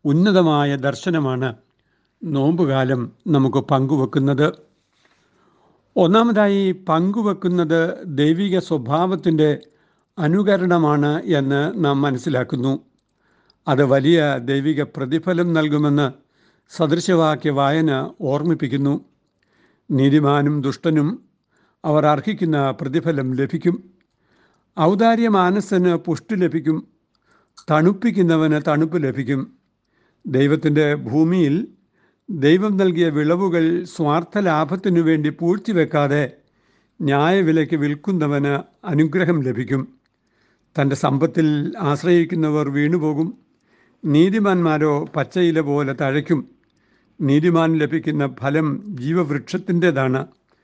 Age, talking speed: 60-79, 70 wpm